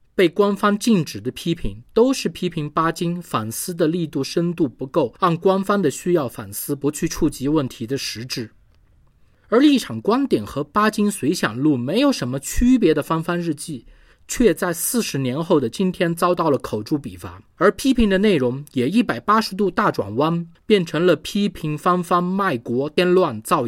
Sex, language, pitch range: male, Chinese, 130-195 Hz